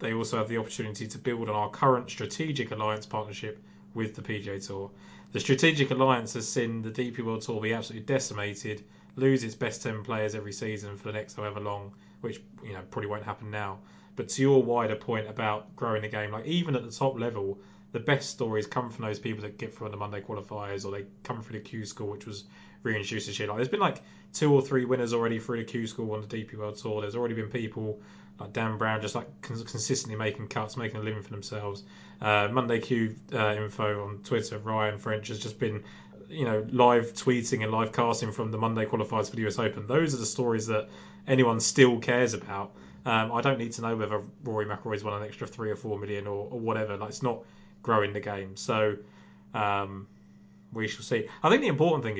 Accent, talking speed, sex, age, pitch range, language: British, 225 wpm, male, 20-39, 105-120 Hz, English